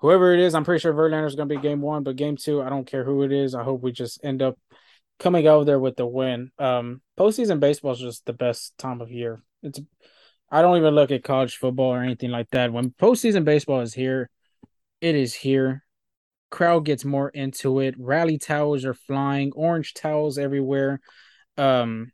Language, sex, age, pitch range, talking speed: English, male, 20-39, 130-155 Hz, 210 wpm